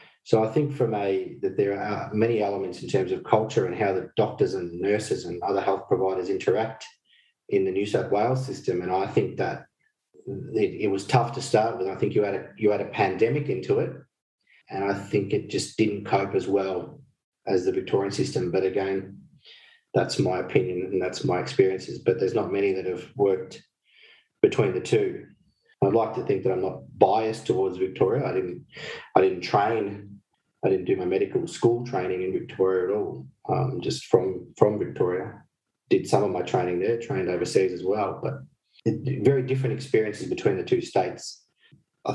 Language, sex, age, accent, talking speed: English, male, 30-49, Australian, 190 wpm